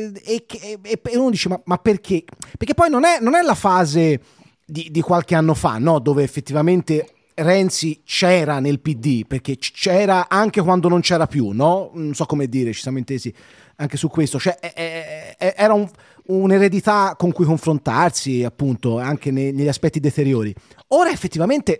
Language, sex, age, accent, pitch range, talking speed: English, male, 30-49, Italian, 140-200 Hz, 155 wpm